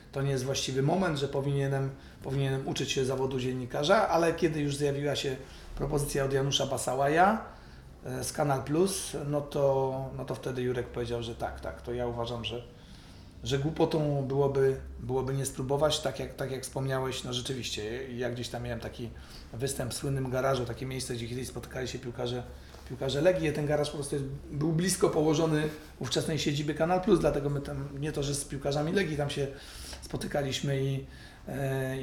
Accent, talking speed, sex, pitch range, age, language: native, 175 wpm, male, 120-145 Hz, 40-59, Polish